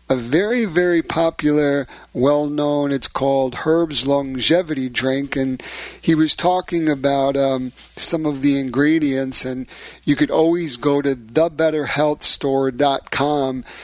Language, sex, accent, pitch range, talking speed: English, male, American, 130-150 Hz, 115 wpm